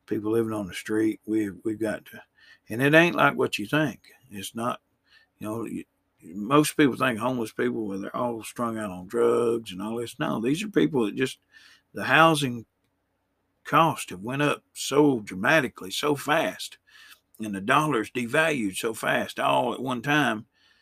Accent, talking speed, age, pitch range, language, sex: American, 180 wpm, 50-69, 105-145 Hz, English, male